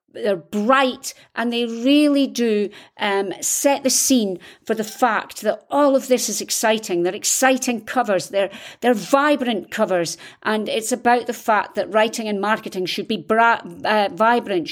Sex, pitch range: female, 195-260 Hz